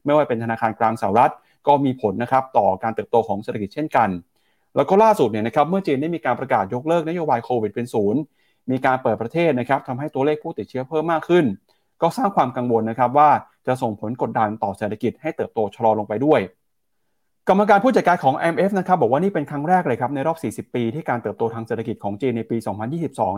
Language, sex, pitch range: Thai, male, 110-150 Hz